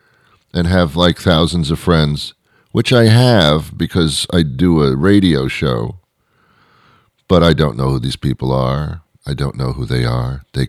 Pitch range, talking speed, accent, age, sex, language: 75-105 Hz, 170 wpm, American, 50-69, male, English